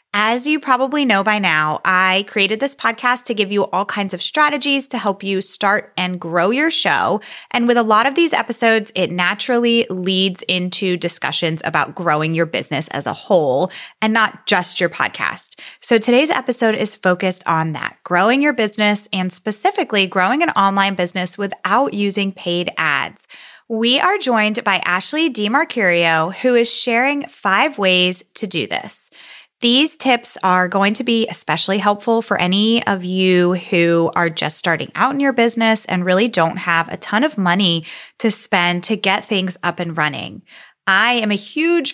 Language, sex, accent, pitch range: English, female, American, 180-235 Hz